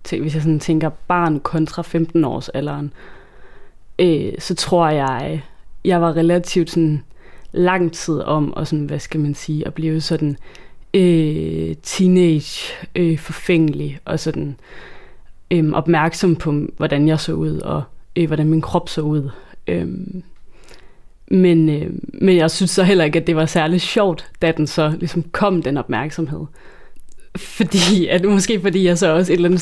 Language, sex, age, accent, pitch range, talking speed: Danish, female, 30-49, native, 155-175 Hz, 160 wpm